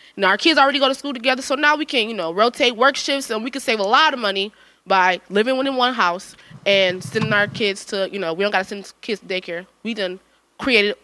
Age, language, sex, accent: 20-39, English, female, American